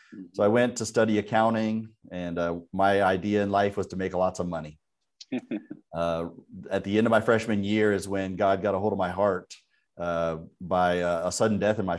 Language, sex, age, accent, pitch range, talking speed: English, male, 40-59, American, 90-105 Hz, 215 wpm